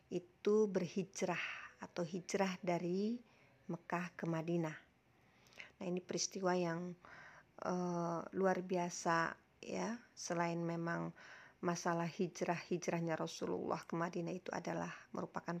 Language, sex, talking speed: Indonesian, female, 100 wpm